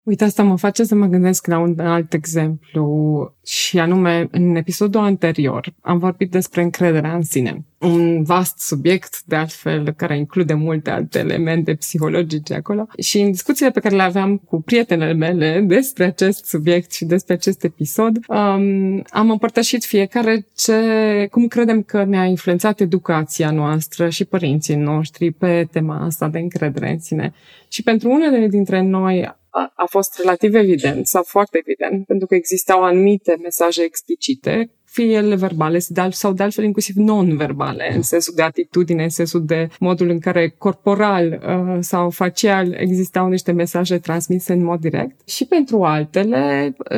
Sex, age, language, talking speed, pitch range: female, 20-39, Romanian, 155 wpm, 165-205 Hz